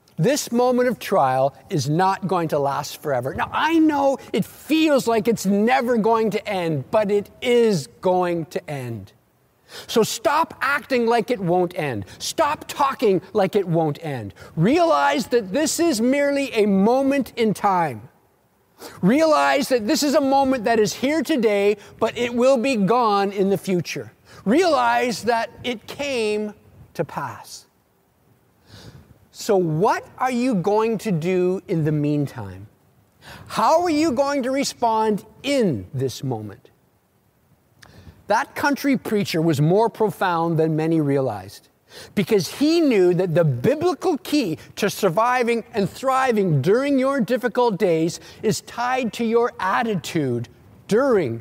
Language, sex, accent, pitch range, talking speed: English, male, American, 165-255 Hz, 140 wpm